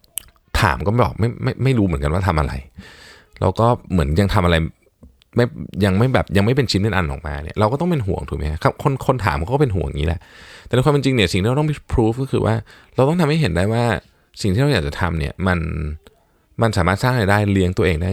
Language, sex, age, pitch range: Thai, male, 20-39, 80-110 Hz